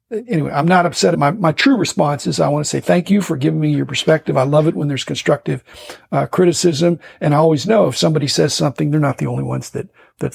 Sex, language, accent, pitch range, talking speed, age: male, English, American, 145-175 Hz, 255 wpm, 50-69